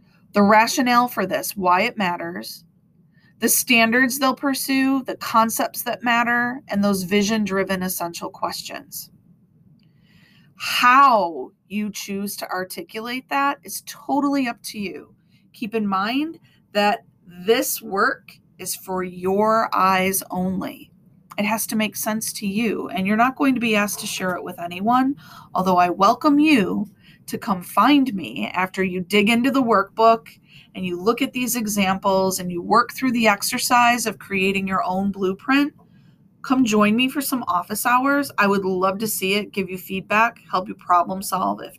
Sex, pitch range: female, 190-240 Hz